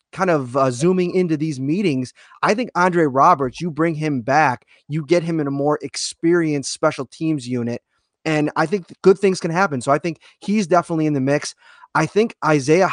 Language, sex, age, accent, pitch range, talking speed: English, male, 20-39, American, 140-180 Hz, 200 wpm